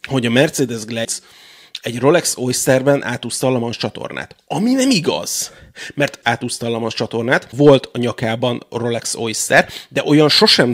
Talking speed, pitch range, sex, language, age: 145 wpm, 115-140 Hz, male, Hungarian, 30-49